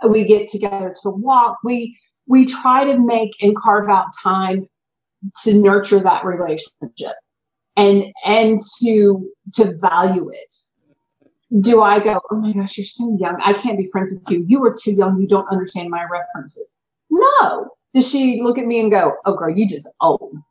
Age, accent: 30-49, American